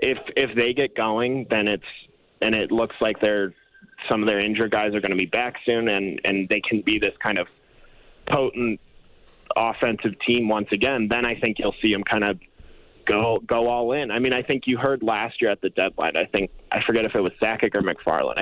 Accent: American